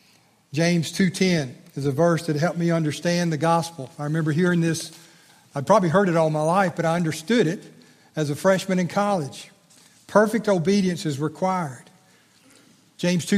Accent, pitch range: American, 155-195 Hz